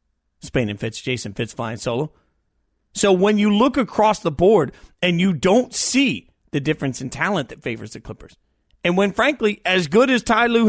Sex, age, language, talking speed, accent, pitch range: male, 40-59, English, 190 wpm, American, 140-210 Hz